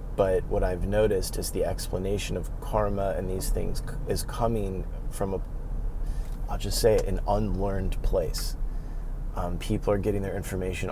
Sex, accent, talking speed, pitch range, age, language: male, American, 160 wpm, 95-120 Hz, 30-49, English